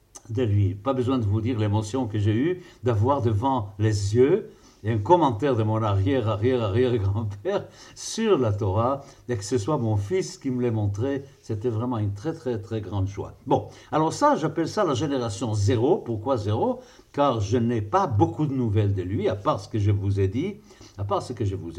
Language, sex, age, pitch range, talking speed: French, male, 60-79, 100-135 Hz, 205 wpm